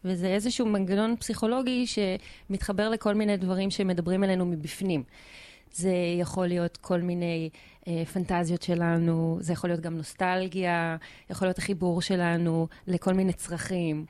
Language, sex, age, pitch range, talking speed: Hebrew, female, 20-39, 175-215 Hz, 130 wpm